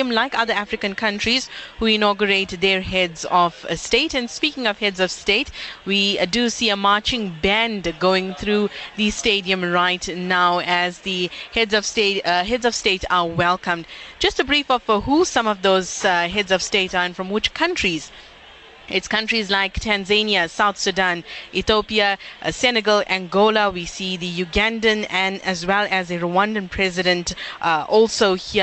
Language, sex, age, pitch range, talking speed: English, female, 20-39, 180-225 Hz, 170 wpm